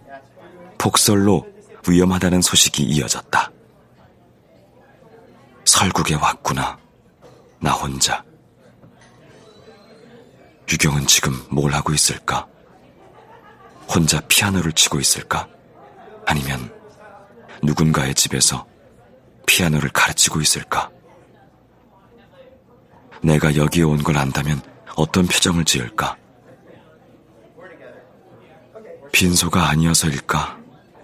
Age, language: 40-59, Korean